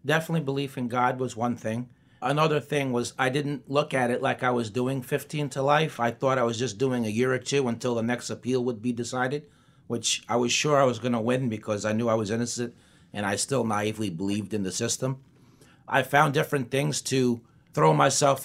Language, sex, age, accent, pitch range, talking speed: English, male, 30-49, American, 115-135 Hz, 225 wpm